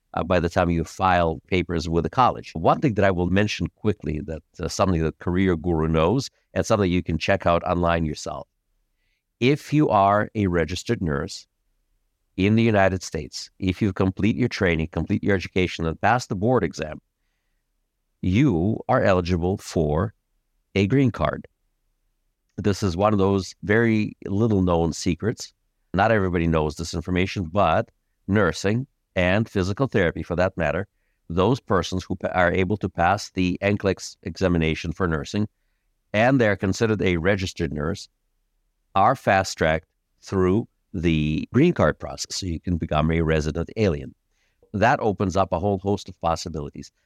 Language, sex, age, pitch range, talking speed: English, male, 60-79, 85-105 Hz, 160 wpm